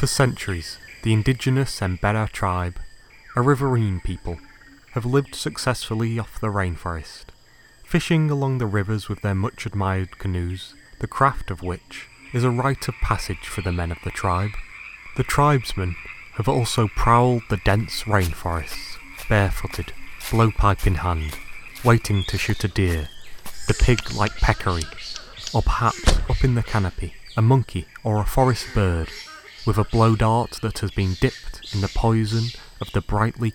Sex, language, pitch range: male, English, 95-120 Hz